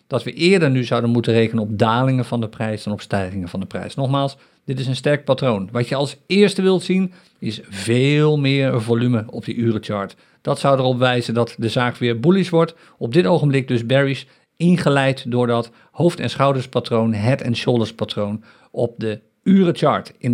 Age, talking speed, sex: 50-69, 190 wpm, male